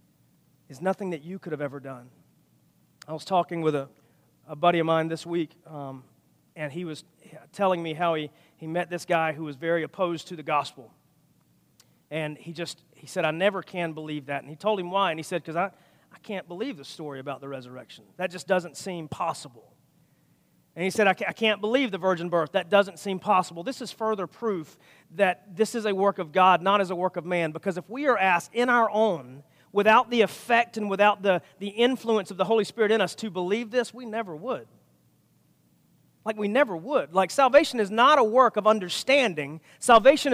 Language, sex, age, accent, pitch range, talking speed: English, male, 40-59, American, 170-230 Hz, 215 wpm